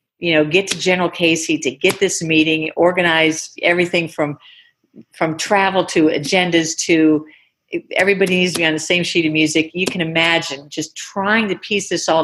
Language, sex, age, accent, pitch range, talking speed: English, female, 50-69, American, 150-180 Hz, 180 wpm